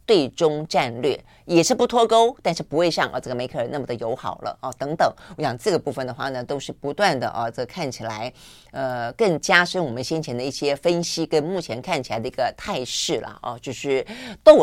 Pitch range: 130-180 Hz